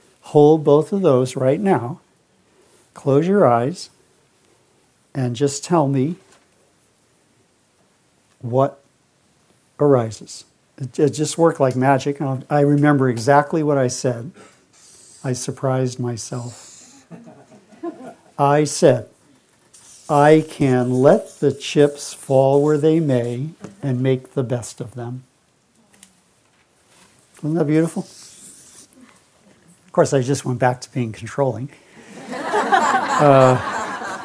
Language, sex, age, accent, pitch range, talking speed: English, male, 60-79, American, 130-160 Hz, 105 wpm